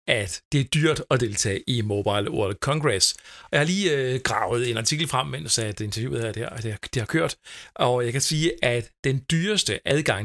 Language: Danish